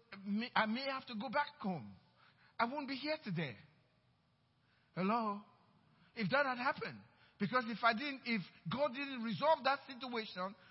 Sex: male